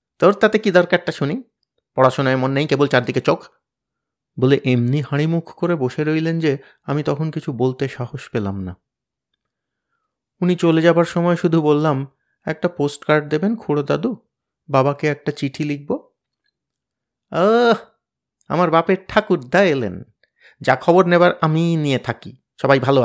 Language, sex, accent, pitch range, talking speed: Bengali, male, native, 120-160 Hz, 140 wpm